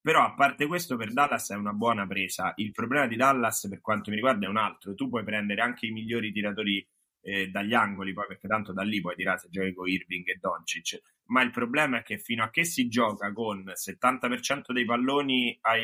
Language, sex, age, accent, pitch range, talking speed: Italian, male, 30-49, native, 105-150 Hz, 225 wpm